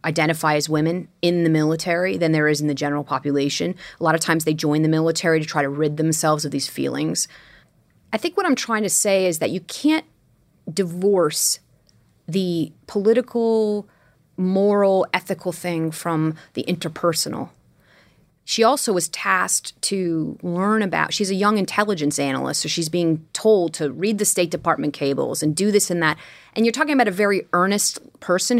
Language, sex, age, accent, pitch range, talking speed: English, female, 30-49, American, 160-205 Hz, 180 wpm